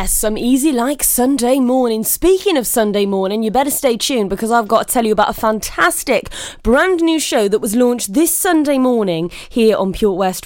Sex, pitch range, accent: female, 205-270 Hz, British